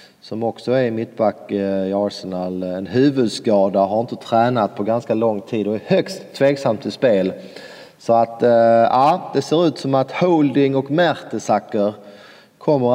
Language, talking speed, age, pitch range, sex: English, 155 wpm, 30-49, 105-120 Hz, male